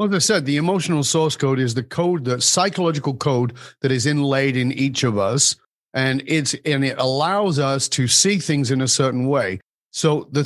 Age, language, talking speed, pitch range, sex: 40-59, English, 205 wpm, 130-165 Hz, male